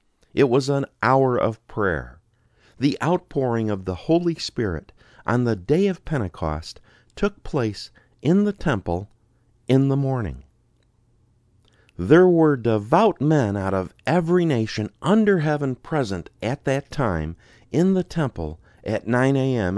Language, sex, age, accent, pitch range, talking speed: English, male, 50-69, American, 105-140 Hz, 135 wpm